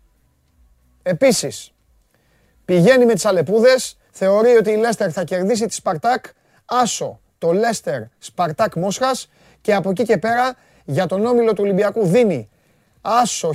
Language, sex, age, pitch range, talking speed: Greek, male, 30-49, 145-215 Hz, 135 wpm